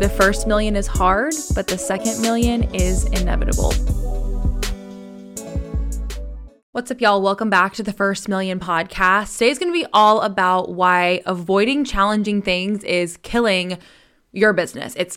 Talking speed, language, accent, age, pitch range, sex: 140 wpm, English, American, 20-39, 180-220 Hz, female